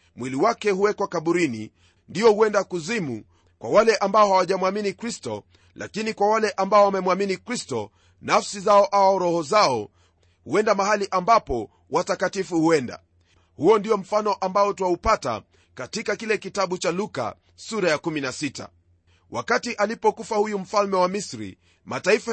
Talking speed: 130 wpm